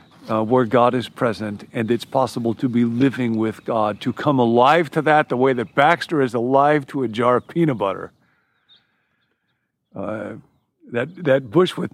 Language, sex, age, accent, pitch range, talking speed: English, male, 50-69, American, 115-160 Hz, 175 wpm